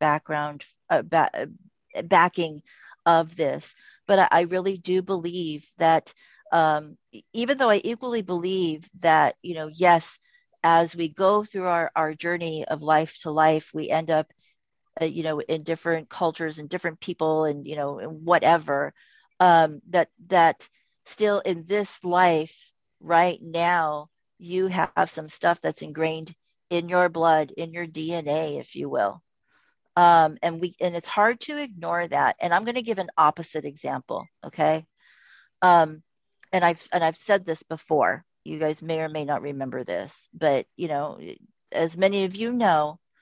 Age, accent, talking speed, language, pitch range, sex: 40-59, American, 160 wpm, English, 155-185 Hz, female